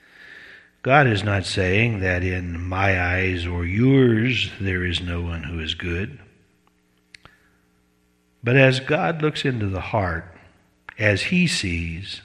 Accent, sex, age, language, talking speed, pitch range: American, male, 60-79, English, 130 wpm, 85-120 Hz